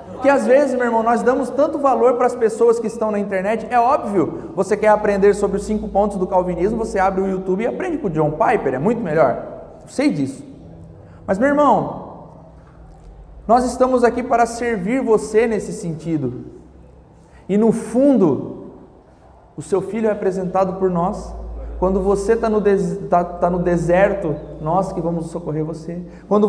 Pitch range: 160-215 Hz